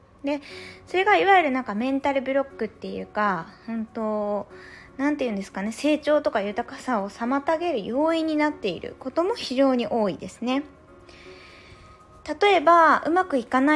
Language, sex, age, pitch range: Japanese, female, 20-39, 210-310 Hz